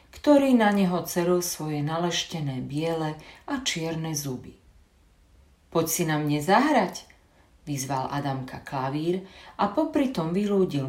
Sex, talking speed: female, 115 wpm